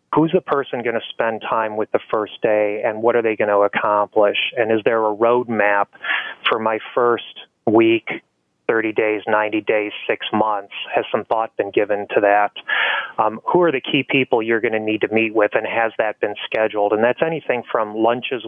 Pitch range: 105-115 Hz